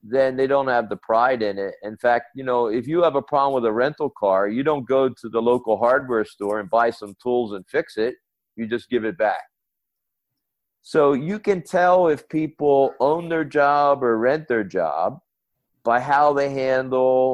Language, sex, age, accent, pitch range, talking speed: English, male, 50-69, American, 115-140 Hz, 200 wpm